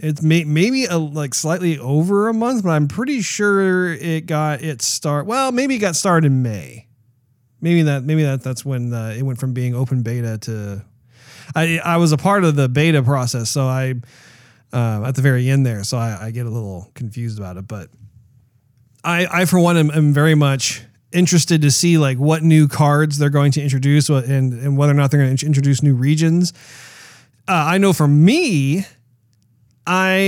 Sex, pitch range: male, 125-160 Hz